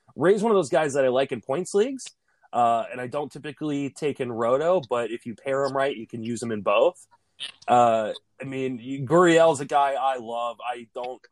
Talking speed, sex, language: 215 wpm, male, English